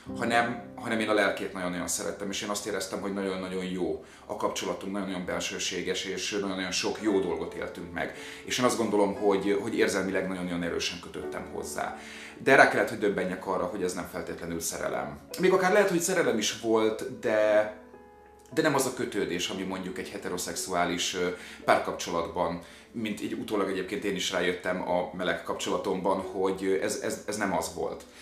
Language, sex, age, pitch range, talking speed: Hungarian, male, 30-49, 90-110 Hz, 175 wpm